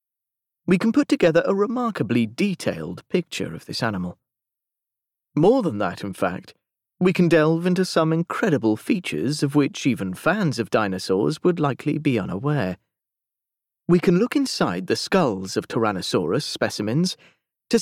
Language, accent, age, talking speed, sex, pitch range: English, British, 30-49, 145 wpm, male, 120-170 Hz